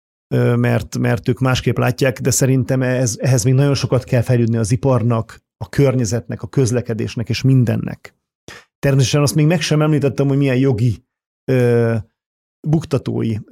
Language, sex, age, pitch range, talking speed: Hungarian, male, 40-59, 120-145 Hz, 140 wpm